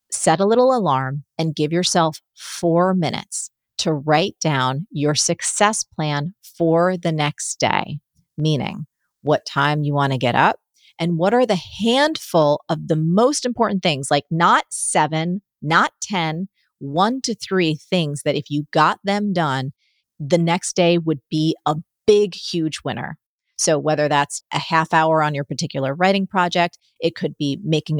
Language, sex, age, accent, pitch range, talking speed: English, female, 40-59, American, 150-180 Hz, 165 wpm